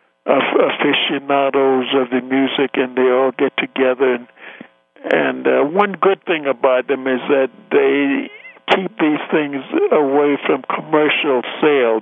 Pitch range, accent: 130-165 Hz, American